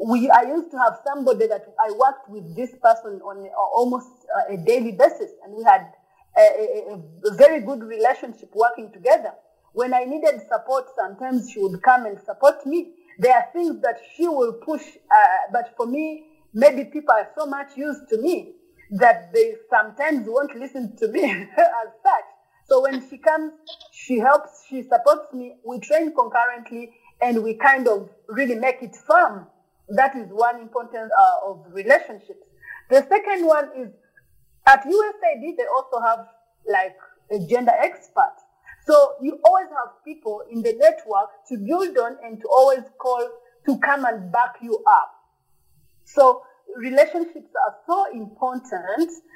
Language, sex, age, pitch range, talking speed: English, female, 30-49, 235-320 Hz, 160 wpm